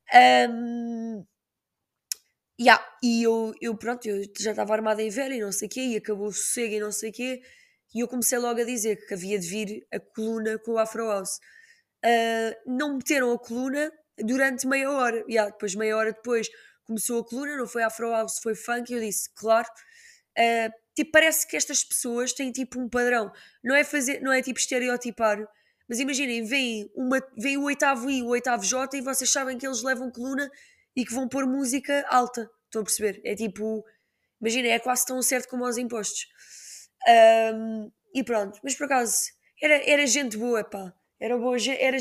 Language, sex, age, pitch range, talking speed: Portuguese, female, 10-29, 220-265 Hz, 195 wpm